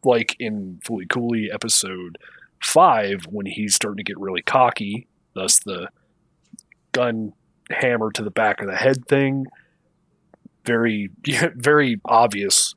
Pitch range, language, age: 100-135 Hz, English, 30-49